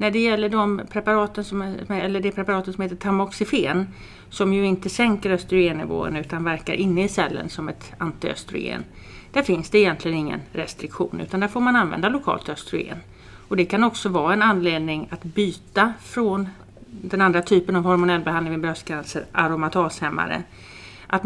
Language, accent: Swedish, native